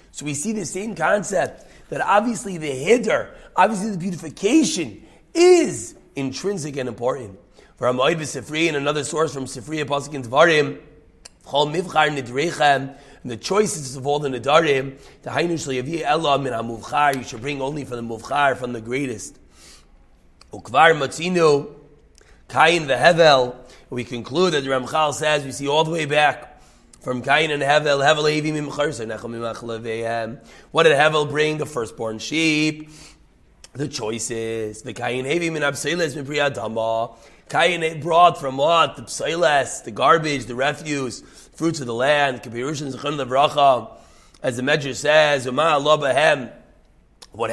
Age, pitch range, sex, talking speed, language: 30-49, 125-160 Hz, male, 140 wpm, English